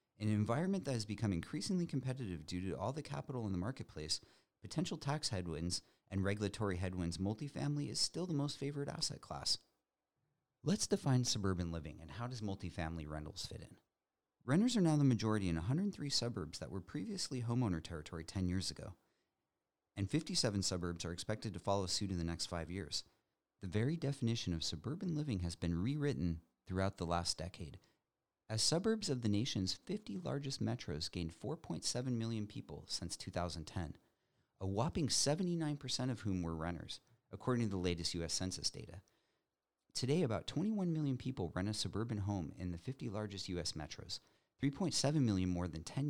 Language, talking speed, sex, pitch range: English, 170 wpm, male, 90-140 Hz